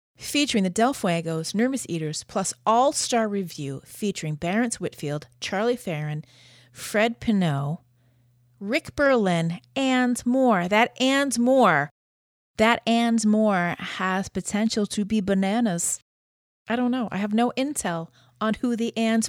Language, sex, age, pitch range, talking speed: English, female, 30-49, 150-225 Hz, 130 wpm